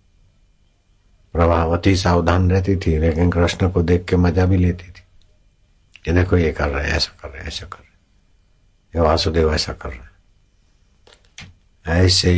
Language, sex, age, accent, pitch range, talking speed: Hindi, male, 60-79, native, 85-95 Hz, 165 wpm